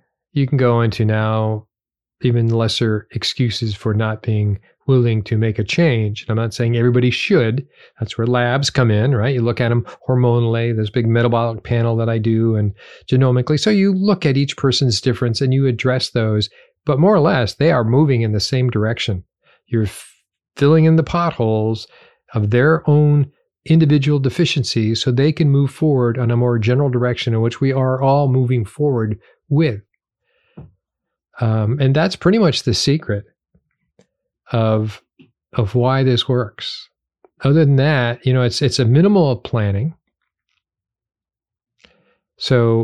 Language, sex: English, male